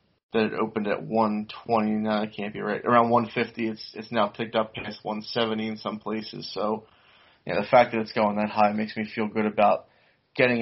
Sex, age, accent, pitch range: male, 20-39, American, 105-120 Hz